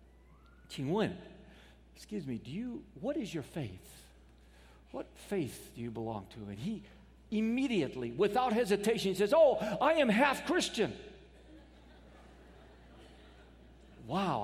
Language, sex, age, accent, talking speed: English, male, 50-69, American, 115 wpm